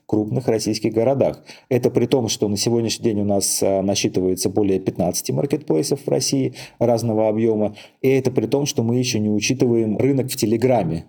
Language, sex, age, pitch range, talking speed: Russian, male, 30-49, 100-115 Hz, 175 wpm